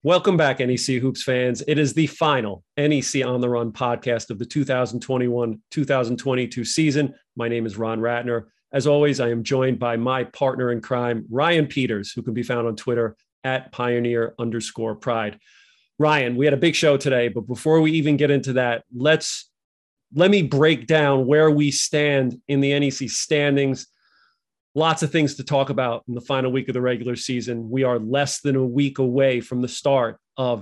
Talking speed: 185 wpm